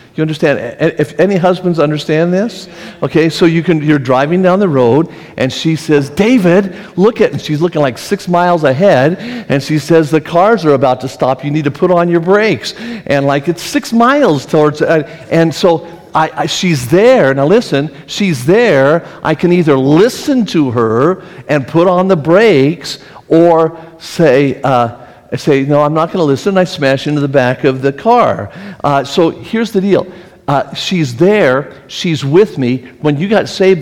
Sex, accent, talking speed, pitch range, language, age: male, American, 190 wpm, 135-180 Hz, English, 50-69